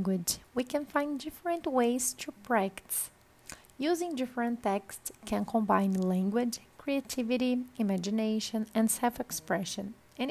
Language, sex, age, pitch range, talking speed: Portuguese, female, 30-49, 215-275 Hz, 105 wpm